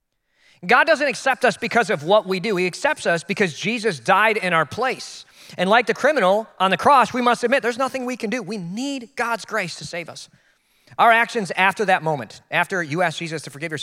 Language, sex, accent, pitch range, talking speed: English, male, American, 145-200 Hz, 225 wpm